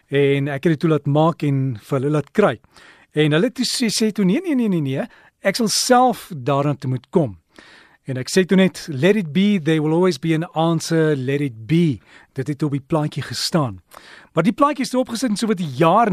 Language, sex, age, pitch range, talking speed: Dutch, male, 40-59, 145-205 Hz, 240 wpm